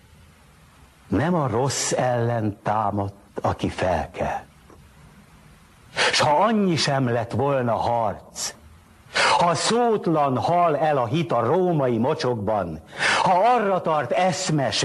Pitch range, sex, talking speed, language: 120-175 Hz, male, 110 wpm, Hungarian